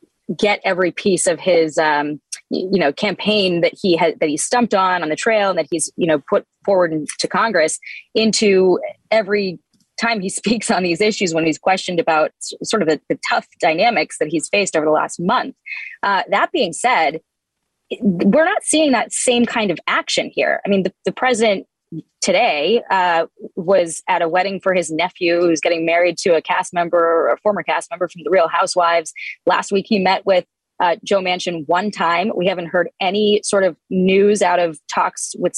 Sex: female